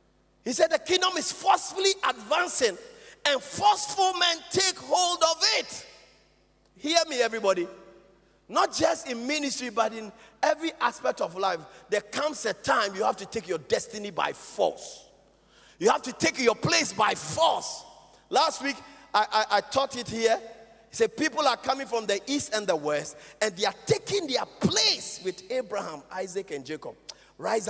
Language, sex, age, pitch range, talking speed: English, male, 40-59, 205-315 Hz, 165 wpm